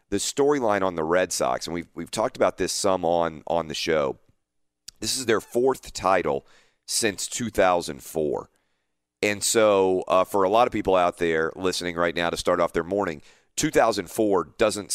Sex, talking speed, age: male, 175 wpm, 40-59